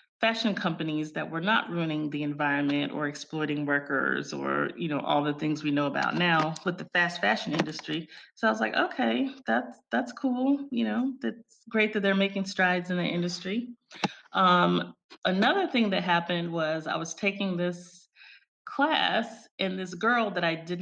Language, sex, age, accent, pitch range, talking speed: English, female, 30-49, American, 160-215 Hz, 180 wpm